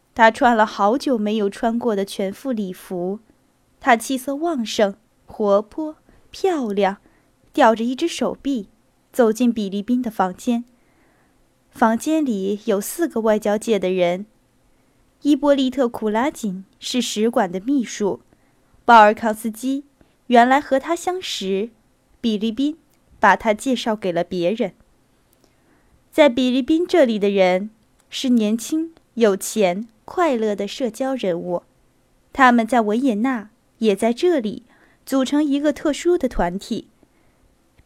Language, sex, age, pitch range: Chinese, female, 10-29, 205-275 Hz